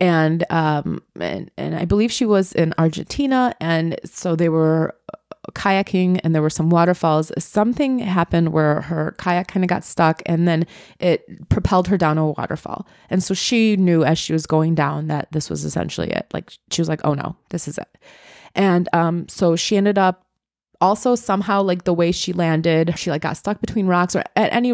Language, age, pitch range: English, 30-49, 165-195 Hz